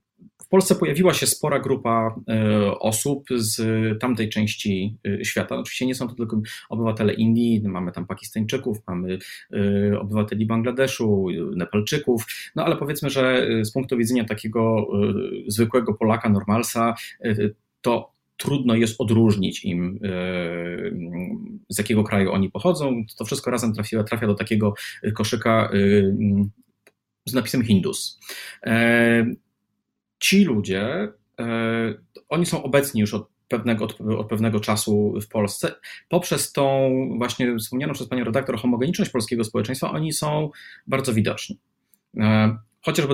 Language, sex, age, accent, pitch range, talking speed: Polish, male, 30-49, native, 105-135 Hz, 115 wpm